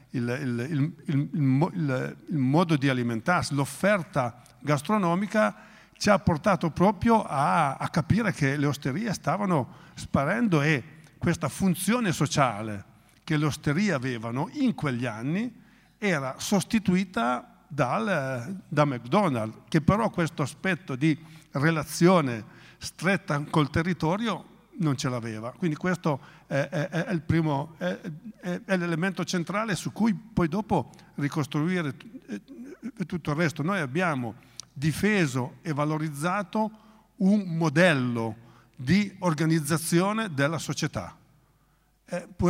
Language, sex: Italian, male